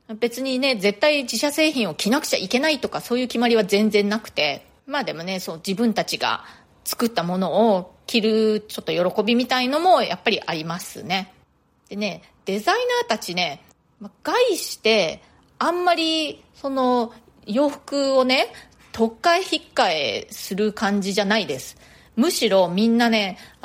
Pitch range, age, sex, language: 195-285 Hz, 30-49, female, Japanese